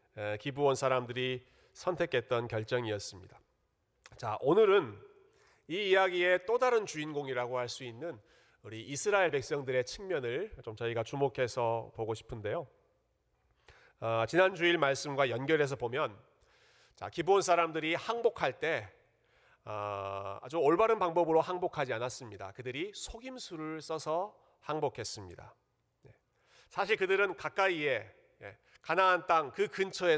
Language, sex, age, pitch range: Korean, male, 40-59, 125-190 Hz